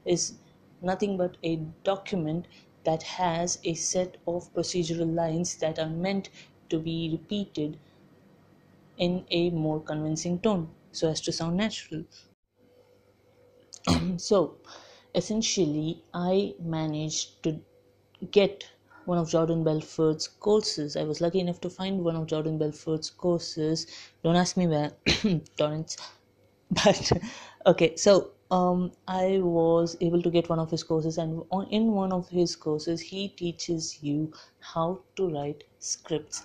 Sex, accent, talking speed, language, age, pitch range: female, Indian, 135 wpm, English, 30-49, 160-185 Hz